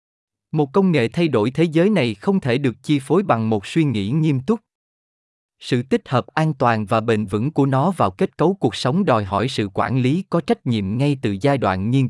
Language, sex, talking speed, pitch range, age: Vietnamese, male, 235 wpm, 110-160 Hz, 20-39